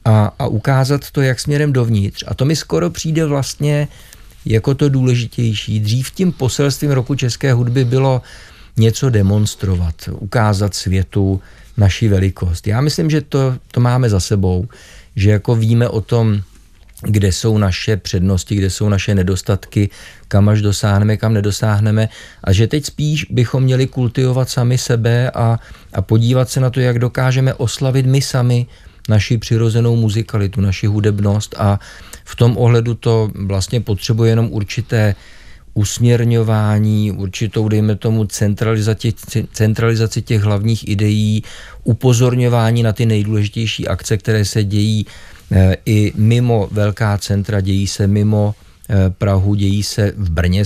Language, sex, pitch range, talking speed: Czech, male, 100-120 Hz, 140 wpm